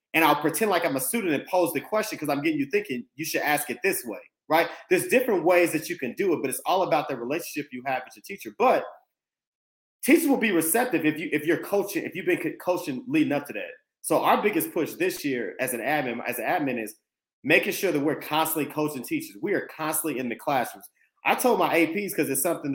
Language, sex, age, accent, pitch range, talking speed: English, male, 30-49, American, 150-250 Hz, 245 wpm